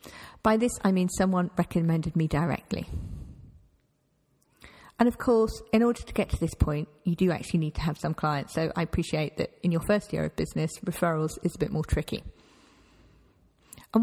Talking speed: 185 wpm